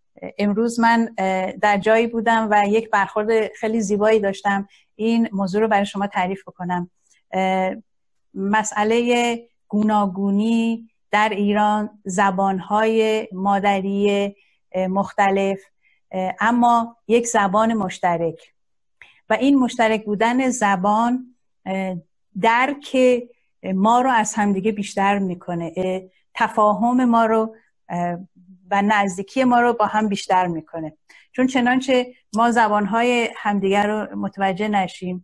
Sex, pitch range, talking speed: female, 195-225 Hz, 100 wpm